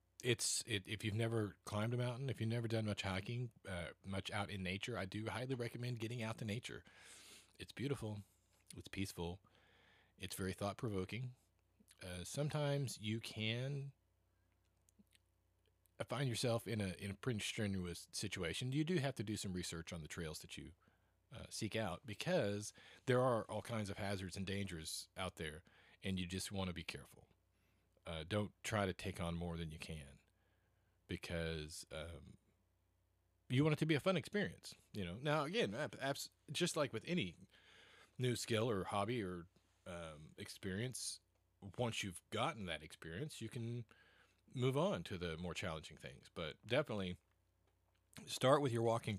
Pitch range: 90-115 Hz